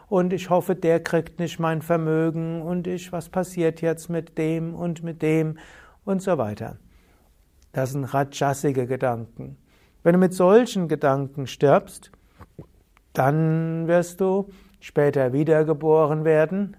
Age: 60-79